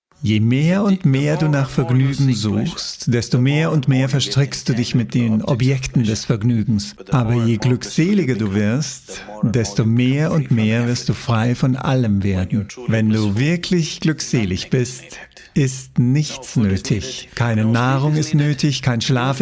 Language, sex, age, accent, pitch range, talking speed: English, male, 50-69, German, 110-145 Hz, 150 wpm